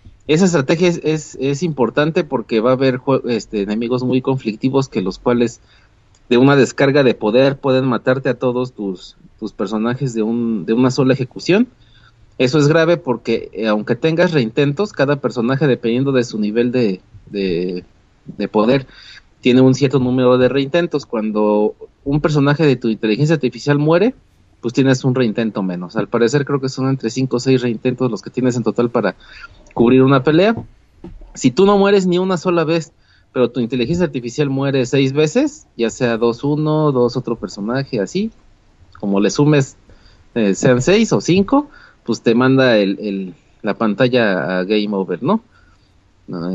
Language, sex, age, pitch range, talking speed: Spanish, male, 30-49, 110-145 Hz, 170 wpm